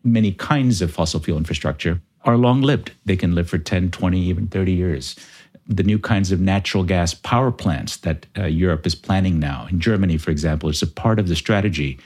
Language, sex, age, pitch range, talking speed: English, male, 50-69, 85-110 Hz, 205 wpm